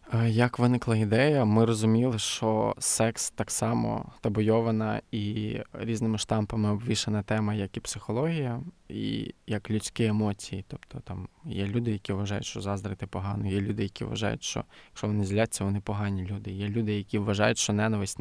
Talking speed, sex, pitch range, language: 160 wpm, male, 100-115 Hz, Ukrainian